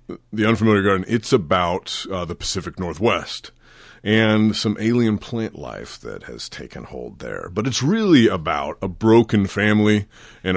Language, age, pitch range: English, 30-49, 85-105 Hz